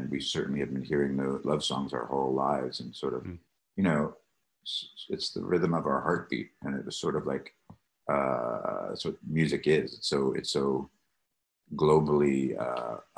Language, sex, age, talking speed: English, male, 30-49, 180 wpm